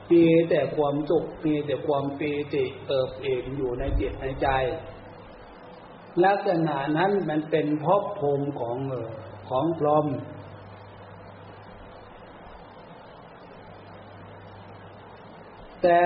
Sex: male